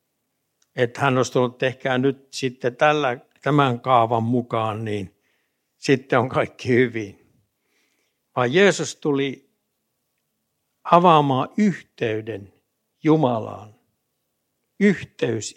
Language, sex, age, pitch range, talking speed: Finnish, male, 60-79, 120-150 Hz, 90 wpm